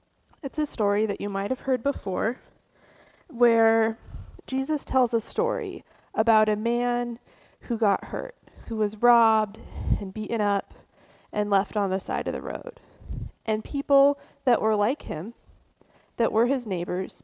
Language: English